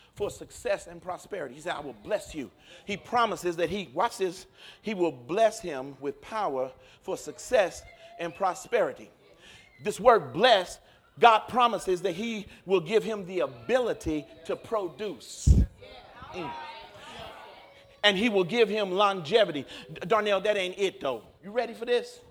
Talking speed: 150 wpm